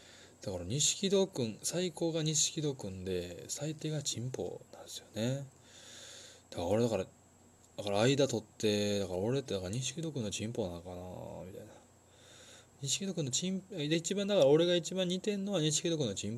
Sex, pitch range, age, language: male, 100-140 Hz, 20-39, Japanese